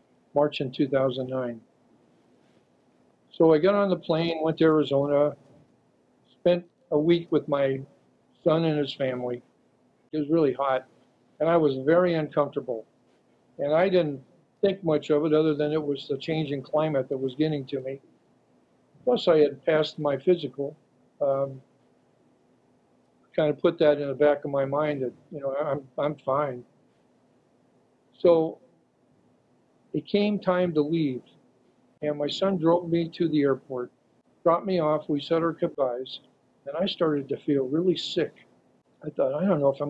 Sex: male